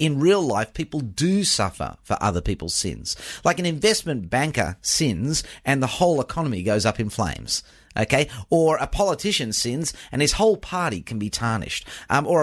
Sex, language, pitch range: male, English, 105-150 Hz